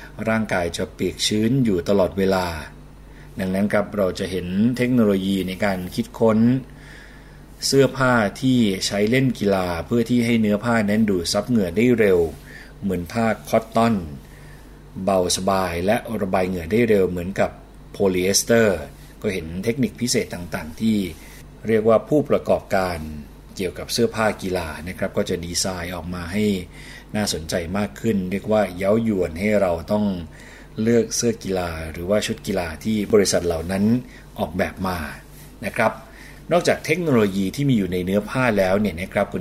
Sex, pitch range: male, 90-115 Hz